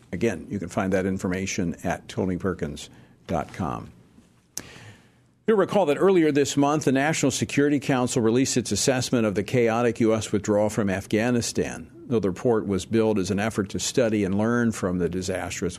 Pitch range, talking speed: 100-135 Hz, 165 wpm